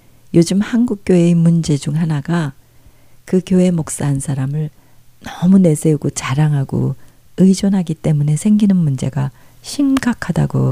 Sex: female